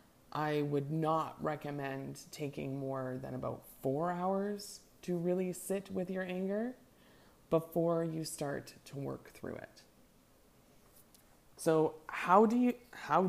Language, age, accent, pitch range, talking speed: English, 20-39, American, 135-175 Hz, 125 wpm